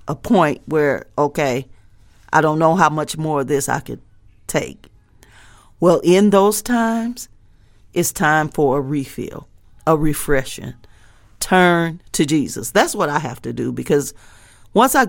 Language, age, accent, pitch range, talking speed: English, 40-59, American, 120-175 Hz, 150 wpm